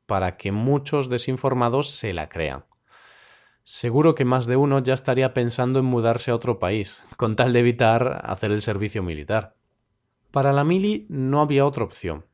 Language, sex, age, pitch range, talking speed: Spanish, male, 40-59, 110-135 Hz, 170 wpm